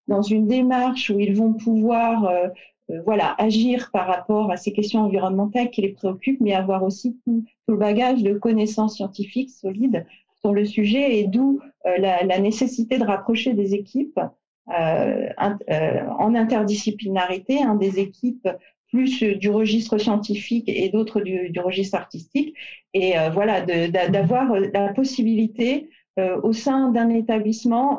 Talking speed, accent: 155 wpm, French